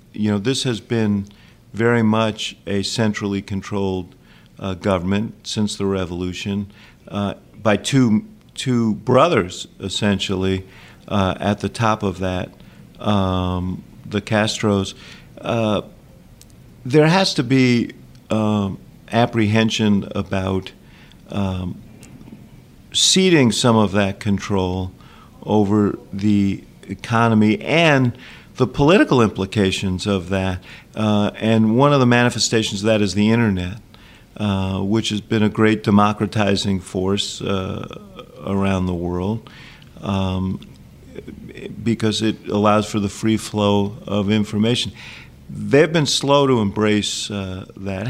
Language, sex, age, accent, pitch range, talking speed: English, male, 50-69, American, 100-115 Hz, 115 wpm